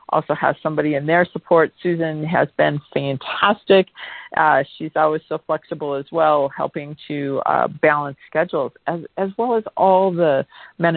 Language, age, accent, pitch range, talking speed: English, 40-59, American, 140-165 Hz, 160 wpm